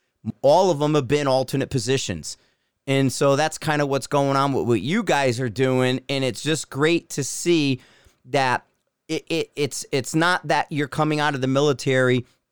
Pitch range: 125-150 Hz